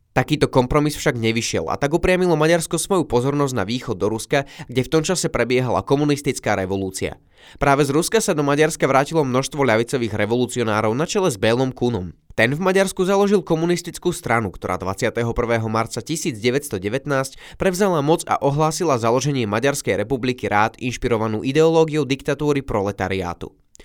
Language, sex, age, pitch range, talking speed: Slovak, male, 20-39, 115-155 Hz, 145 wpm